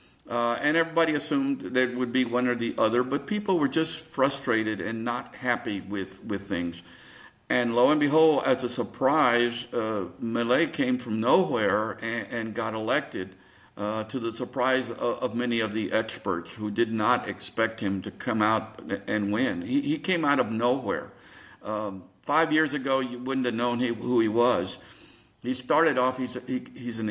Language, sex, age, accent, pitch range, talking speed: English, male, 50-69, American, 110-140 Hz, 190 wpm